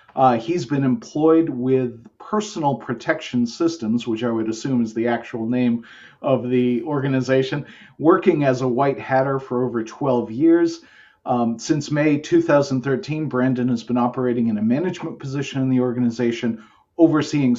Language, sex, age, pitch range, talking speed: English, male, 40-59, 120-145 Hz, 150 wpm